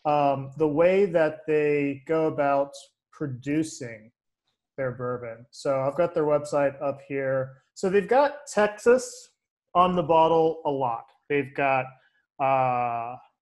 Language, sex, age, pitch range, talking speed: English, male, 30-49, 135-180 Hz, 130 wpm